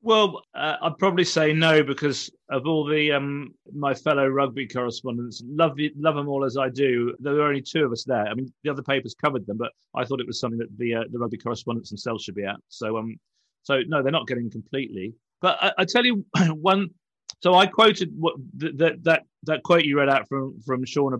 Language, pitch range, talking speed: English, 130-160 Hz, 225 wpm